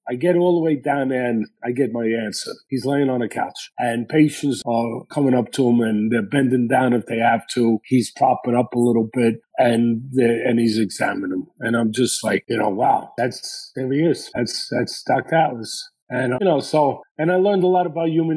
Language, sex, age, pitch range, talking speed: English, male, 40-59, 120-155 Hz, 225 wpm